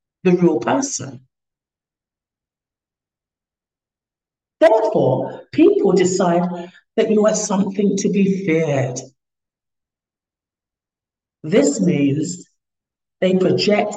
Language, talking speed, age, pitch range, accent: English, 75 wpm, 60-79, 140-210 Hz, British